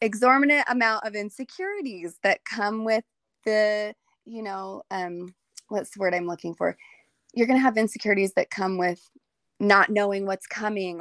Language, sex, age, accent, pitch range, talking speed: English, female, 20-39, American, 180-220 Hz, 160 wpm